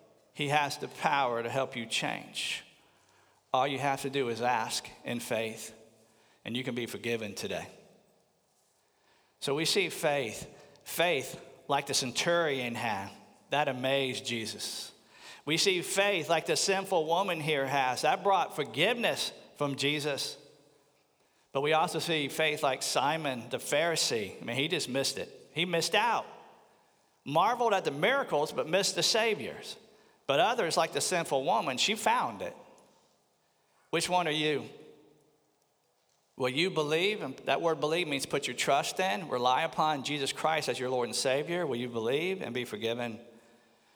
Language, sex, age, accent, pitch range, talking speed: English, male, 50-69, American, 125-160 Hz, 155 wpm